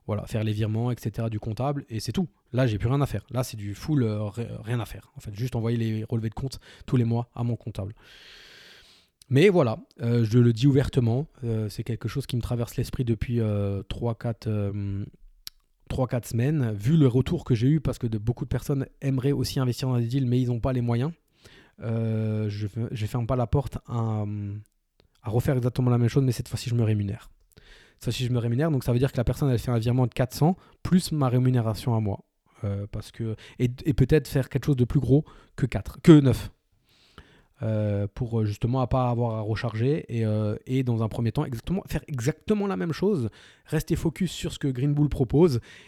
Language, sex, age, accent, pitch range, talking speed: French, male, 20-39, French, 110-135 Hz, 220 wpm